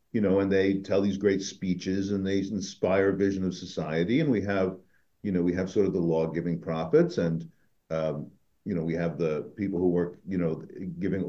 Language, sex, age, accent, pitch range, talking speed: English, male, 50-69, American, 90-125 Hz, 205 wpm